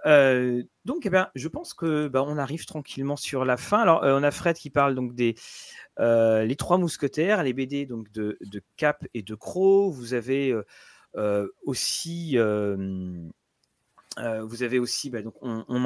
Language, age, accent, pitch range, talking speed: French, 30-49, French, 110-150 Hz, 180 wpm